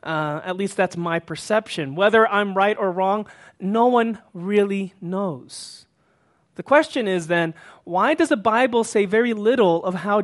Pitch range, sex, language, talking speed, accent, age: 195-265 Hz, male, English, 165 wpm, American, 30-49